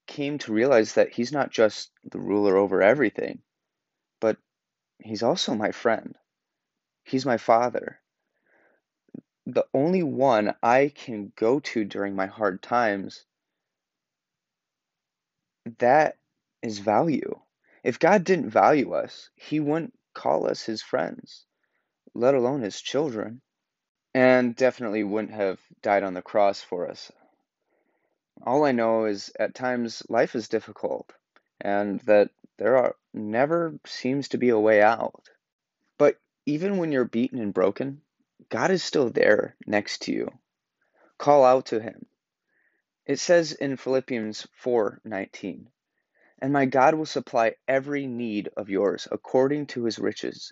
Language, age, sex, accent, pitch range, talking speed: English, 30-49, male, American, 110-140 Hz, 135 wpm